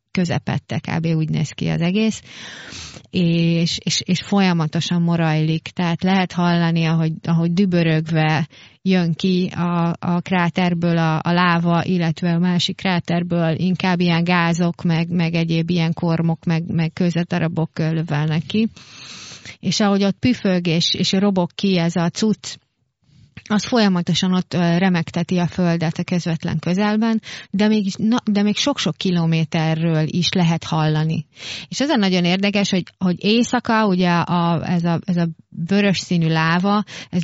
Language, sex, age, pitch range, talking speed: Hungarian, female, 30-49, 160-185 Hz, 145 wpm